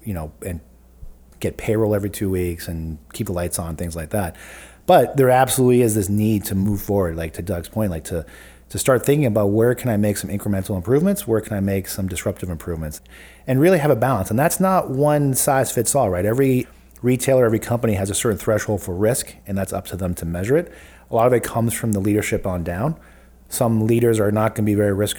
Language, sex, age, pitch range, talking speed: English, male, 30-49, 95-120 Hz, 235 wpm